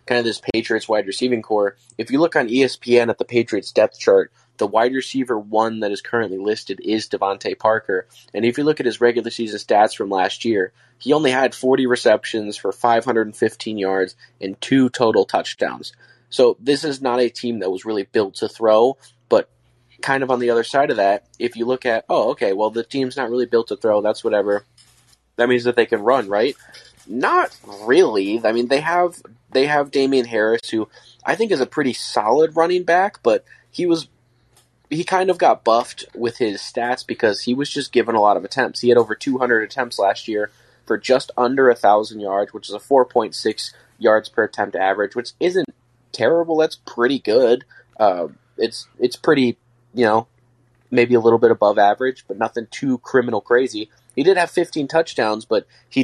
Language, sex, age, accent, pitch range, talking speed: English, male, 20-39, American, 110-135 Hz, 200 wpm